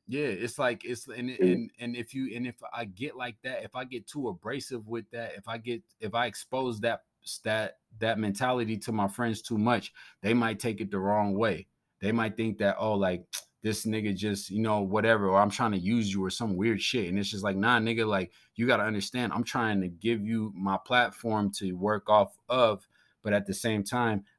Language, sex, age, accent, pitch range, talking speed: English, male, 20-39, American, 100-120 Hz, 225 wpm